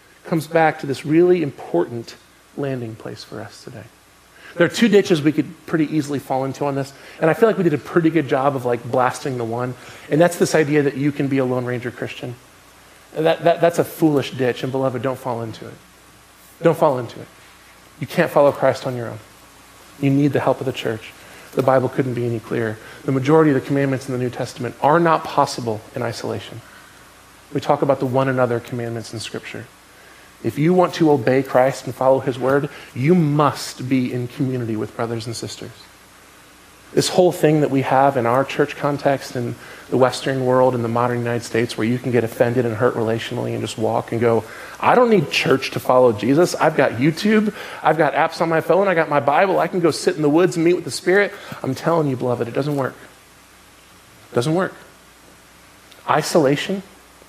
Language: English